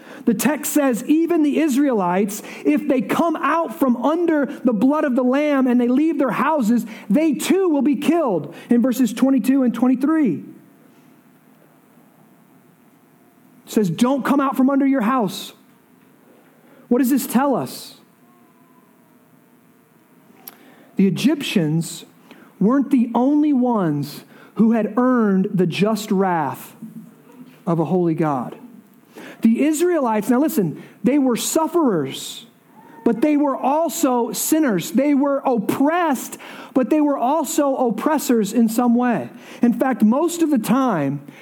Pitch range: 220-280 Hz